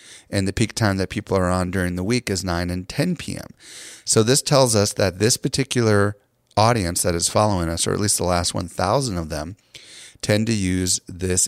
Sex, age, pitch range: male, 30-49, 90-110 Hz